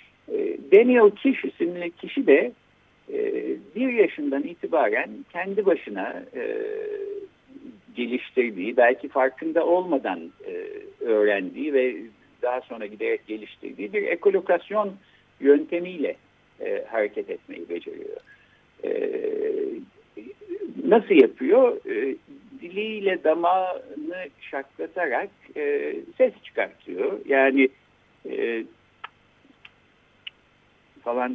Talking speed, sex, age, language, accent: 80 wpm, male, 60-79, Turkish, native